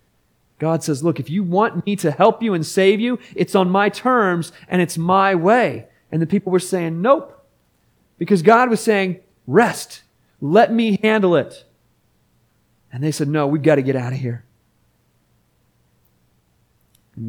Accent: American